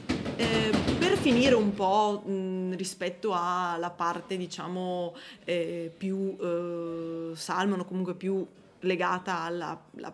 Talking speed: 115 wpm